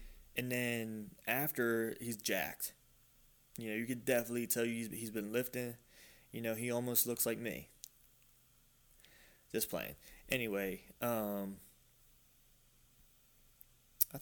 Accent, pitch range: American, 110-130 Hz